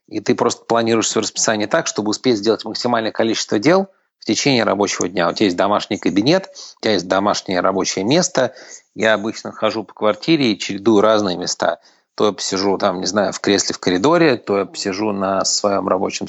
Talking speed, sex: 185 wpm, male